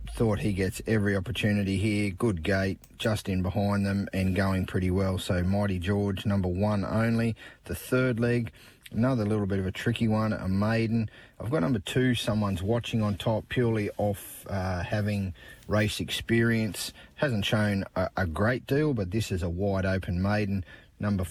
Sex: male